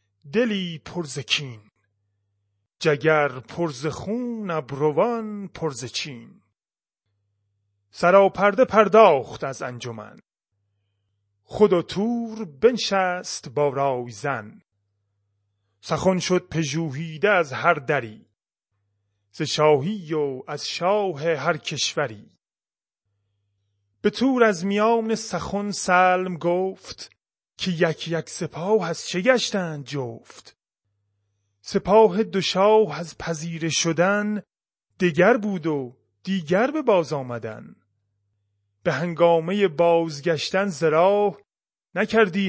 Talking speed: 85 wpm